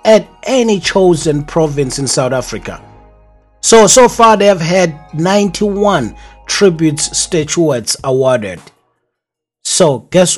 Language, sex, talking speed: English, male, 110 wpm